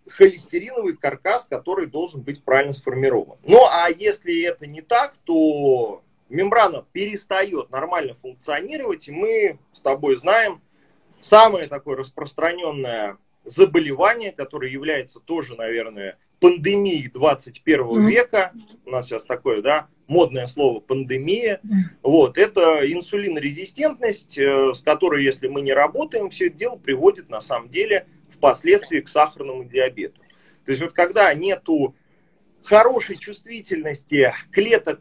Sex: male